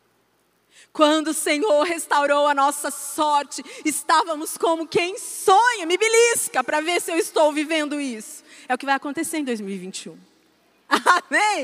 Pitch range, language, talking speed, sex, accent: 230-320 Hz, Portuguese, 140 wpm, female, Brazilian